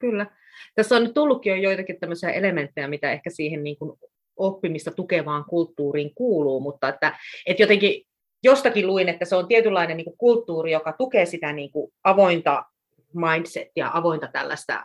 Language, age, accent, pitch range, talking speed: Finnish, 30-49, native, 160-215 Hz, 145 wpm